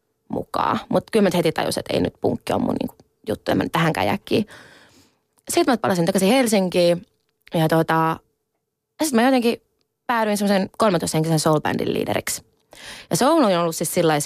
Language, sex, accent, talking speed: Finnish, female, native, 170 wpm